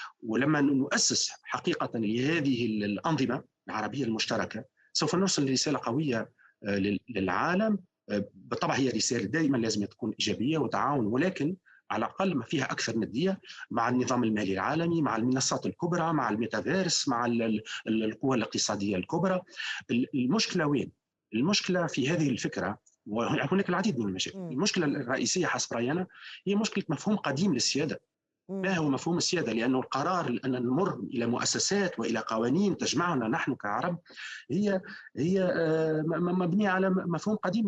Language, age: Arabic, 40-59